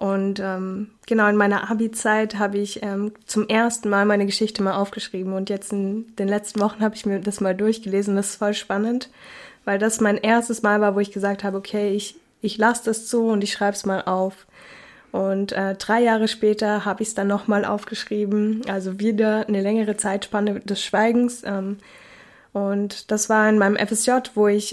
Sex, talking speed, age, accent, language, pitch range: female, 195 wpm, 20-39, German, German, 205-230 Hz